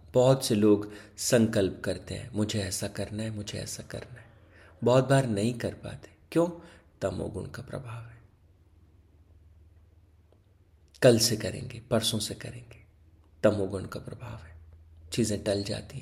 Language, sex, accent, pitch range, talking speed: Hindi, male, native, 95-120 Hz, 140 wpm